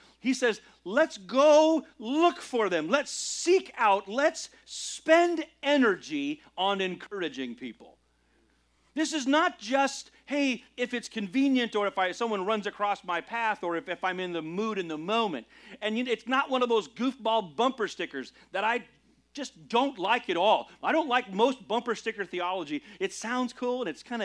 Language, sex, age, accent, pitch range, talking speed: English, male, 40-59, American, 200-280 Hz, 175 wpm